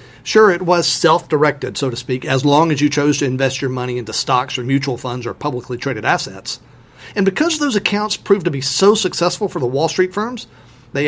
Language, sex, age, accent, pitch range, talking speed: English, male, 40-59, American, 135-190 Hz, 215 wpm